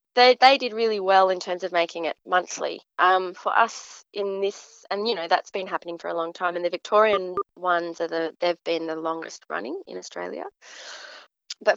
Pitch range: 170-200 Hz